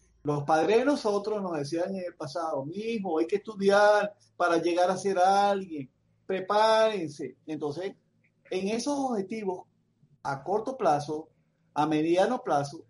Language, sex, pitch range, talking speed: Spanish, male, 155-210 Hz, 135 wpm